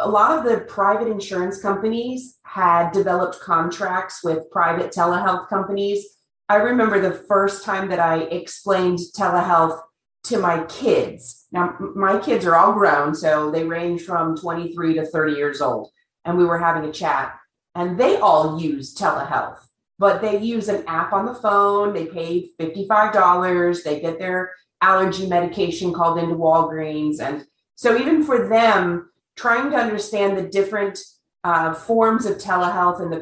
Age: 30-49